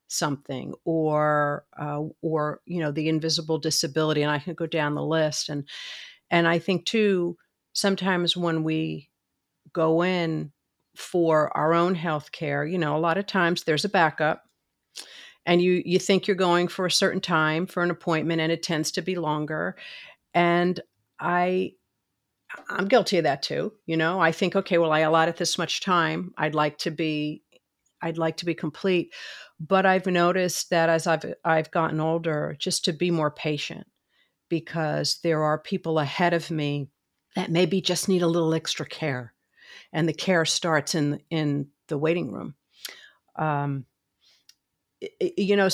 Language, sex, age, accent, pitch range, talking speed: English, female, 50-69, American, 155-180 Hz, 165 wpm